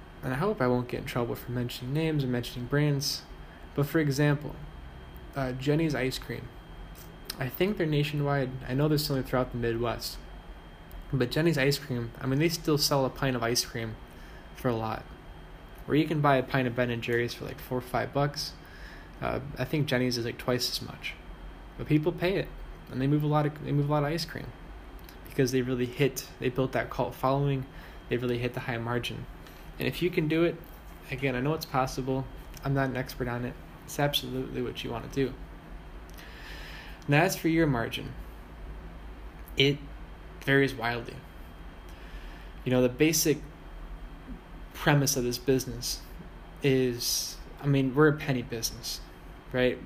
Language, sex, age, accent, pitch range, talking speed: English, male, 10-29, American, 120-145 Hz, 185 wpm